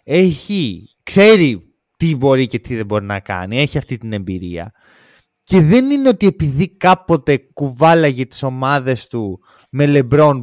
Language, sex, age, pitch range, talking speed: Greek, male, 20-39, 130-170 Hz, 150 wpm